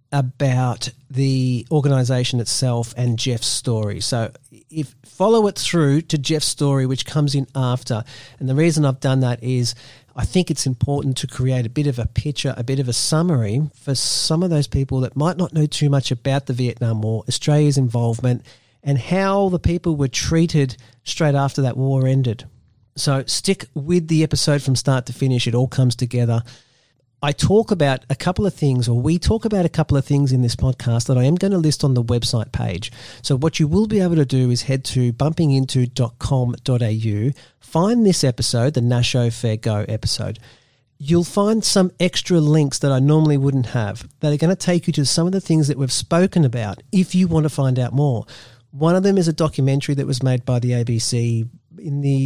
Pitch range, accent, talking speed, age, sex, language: 125-155 Hz, Australian, 205 wpm, 40-59, male, English